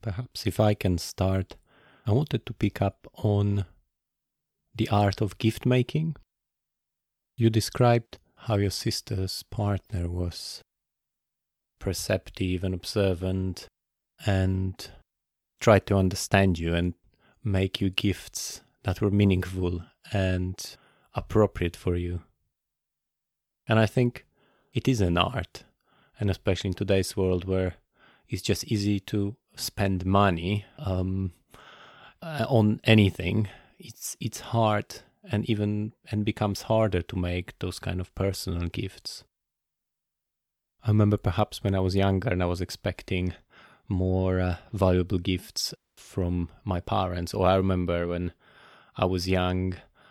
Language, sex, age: English, male, 30-49